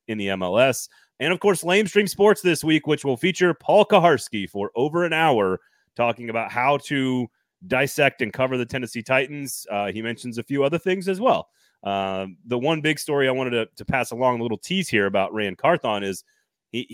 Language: English